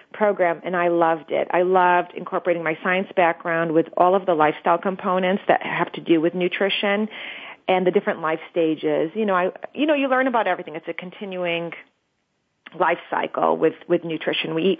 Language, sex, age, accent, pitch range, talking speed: English, female, 30-49, American, 175-210 Hz, 190 wpm